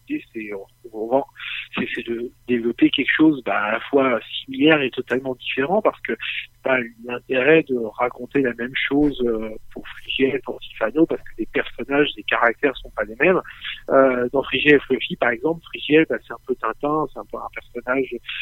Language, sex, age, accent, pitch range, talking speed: French, male, 50-69, French, 120-160 Hz, 190 wpm